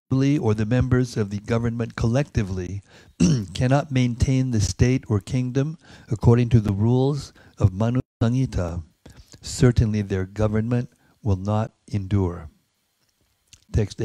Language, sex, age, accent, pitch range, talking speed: English, male, 60-79, American, 100-125 Hz, 115 wpm